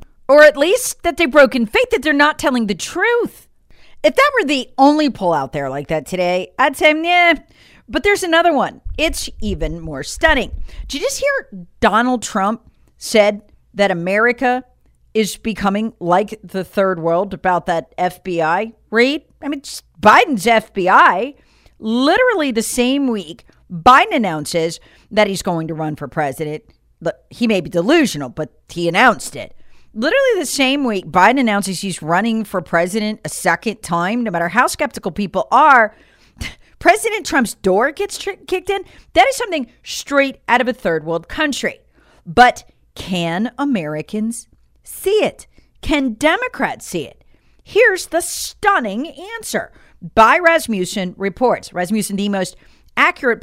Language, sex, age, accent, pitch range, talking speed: English, female, 40-59, American, 185-295 Hz, 150 wpm